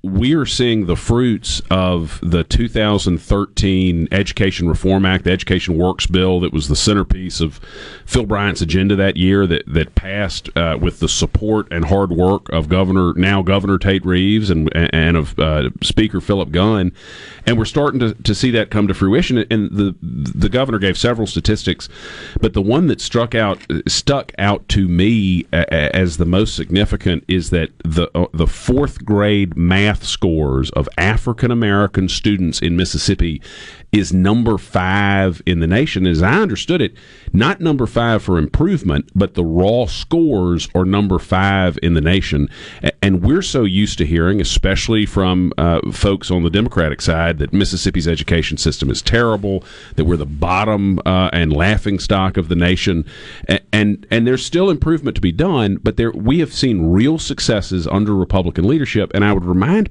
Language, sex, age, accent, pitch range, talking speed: English, male, 40-59, American, 85-105 Hz, 170 wpm